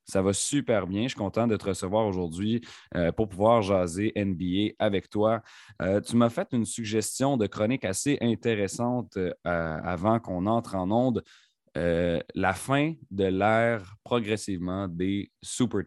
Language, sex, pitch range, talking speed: French, male, 95-120 Hz, 145 wpm